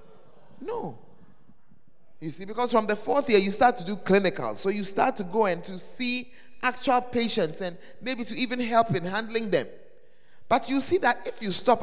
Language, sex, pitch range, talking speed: English, male, 175-265 Hz, 195 wpm